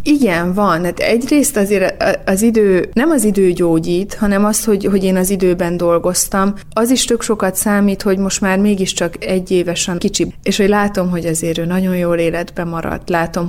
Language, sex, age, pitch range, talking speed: Hungarian, female, 20-39, 170-200 Hz, 185 wpm